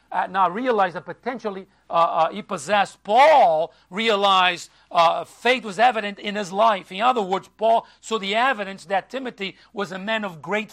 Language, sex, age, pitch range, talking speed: English, male, 50-69, 180-235 Hz, 180 wpm